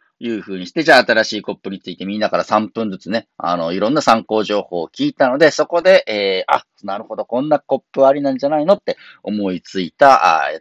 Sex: male